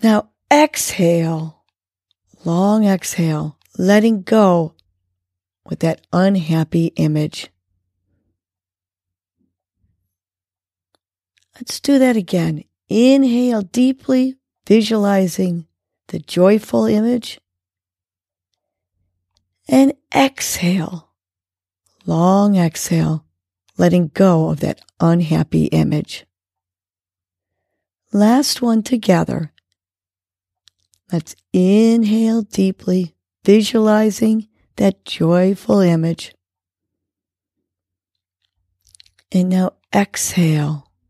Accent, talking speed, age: American, 65 wpm, 40-59